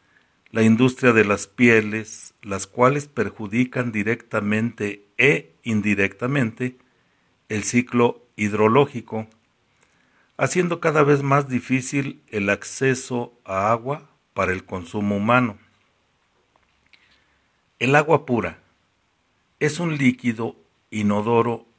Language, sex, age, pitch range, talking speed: Spanish, male, 60-79, 105-135 Hz, 95 wpm